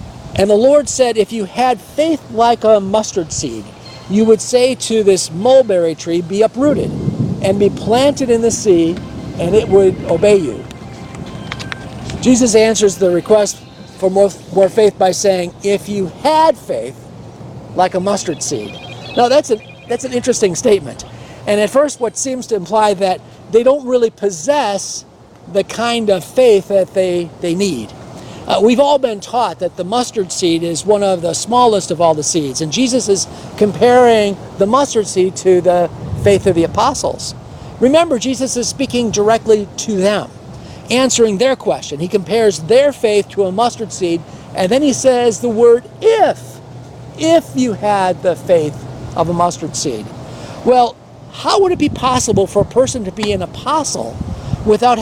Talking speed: 170 wpm